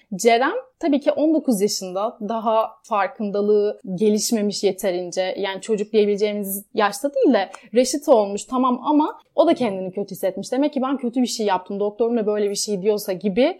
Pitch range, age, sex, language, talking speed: 210-270 Hz, 30-49, female, Turkish, 165 wpm